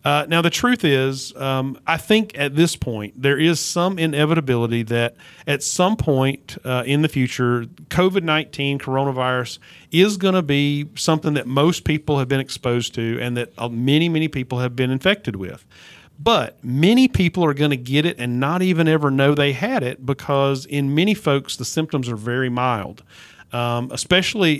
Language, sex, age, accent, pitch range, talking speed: English, male, 40-59, American, 125-155 Hz, 180 wpm